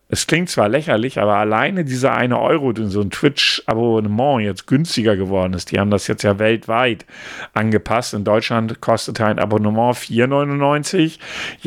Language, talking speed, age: German, 155 wpm, 50-69